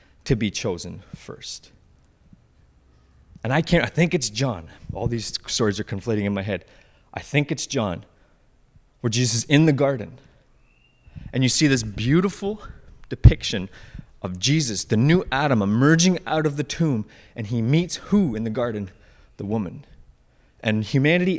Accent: American